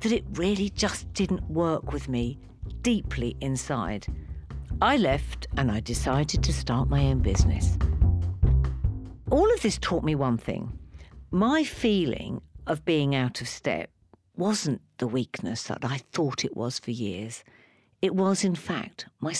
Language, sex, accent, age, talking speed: English, female, British, 50-69, 150 wpm